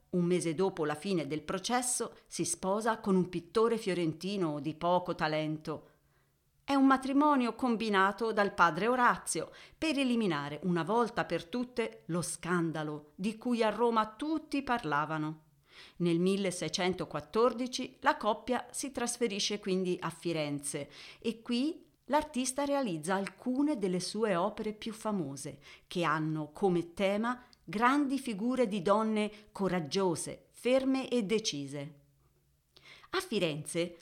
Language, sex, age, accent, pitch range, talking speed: Italian, female, 40-59, native, 165-240 Hz, 125 wpm